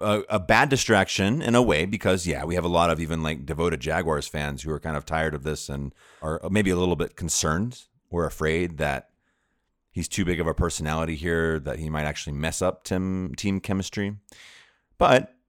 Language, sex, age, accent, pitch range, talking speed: English, male, 30-49, American, 80-105 Hz, 200 wpm